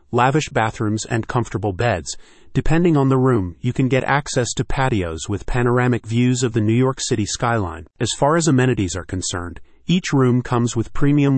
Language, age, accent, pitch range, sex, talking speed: English, 40-59, American, 110-135 Hz, male, 185 wpm